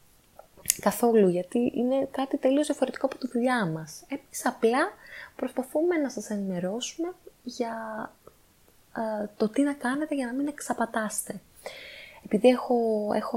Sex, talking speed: female, 125 wpm